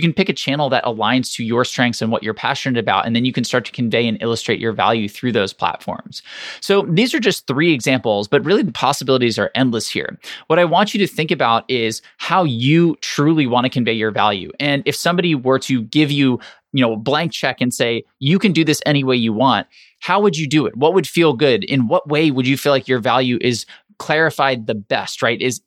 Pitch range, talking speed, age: 120-155 Hz, 245 wpm, 20-39